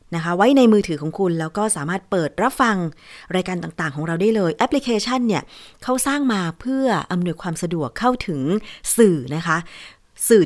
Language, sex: Thai, female